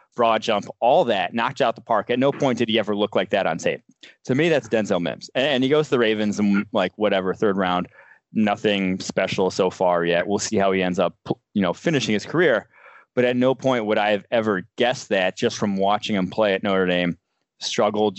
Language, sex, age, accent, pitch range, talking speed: English, male, 20-39, American, 100-120 Hz, 230 wpm